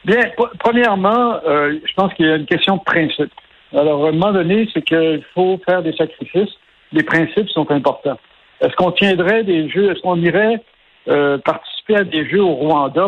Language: French